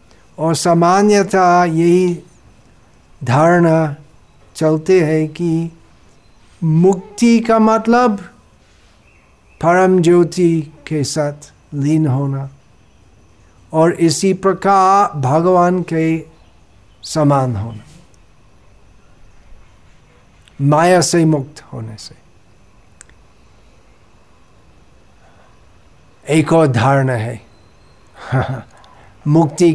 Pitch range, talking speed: 115-175 Hz, 65 wpm